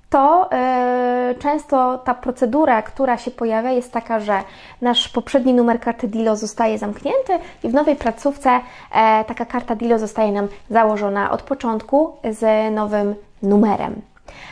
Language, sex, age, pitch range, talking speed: Polish, female, 20-39, 205-250 Hz, 130 wpm